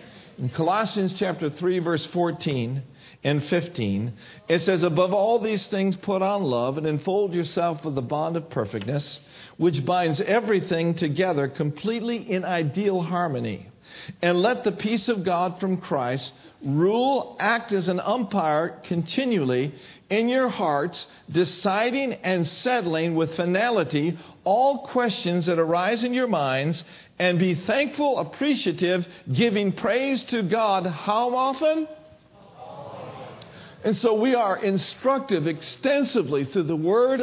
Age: 50-69